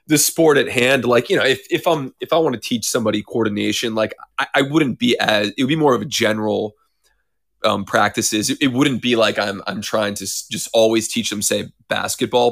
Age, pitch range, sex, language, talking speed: 20-39, 110-125 Hz, male, English, 225 wpm